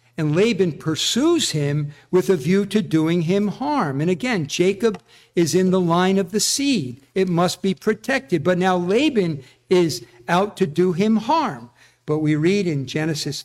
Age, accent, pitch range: 50-69, American, 150-205 Hz